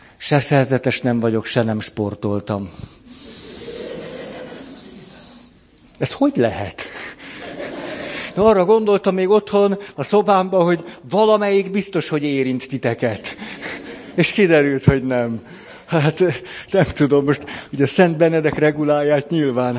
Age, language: 60-79, Hungarian